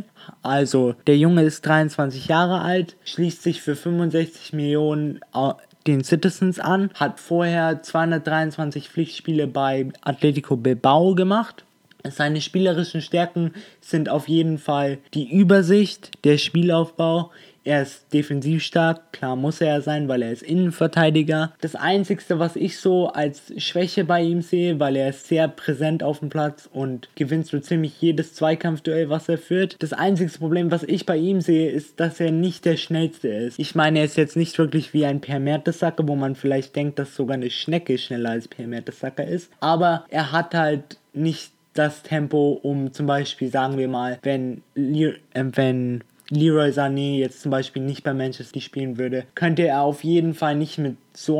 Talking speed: 170 wpm